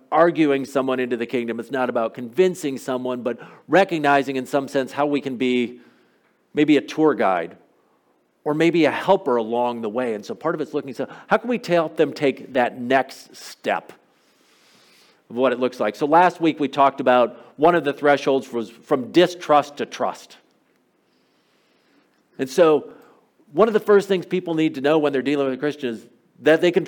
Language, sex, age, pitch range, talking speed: English, male, 50-69, 130-165 Hz, 195 wpm